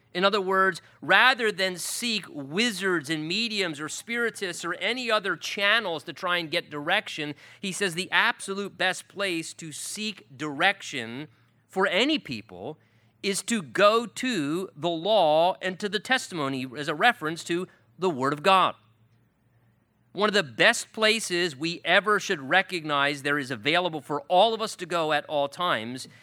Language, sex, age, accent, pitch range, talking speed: English, male, 40-59, American, 135-195 Hz, 160 wpm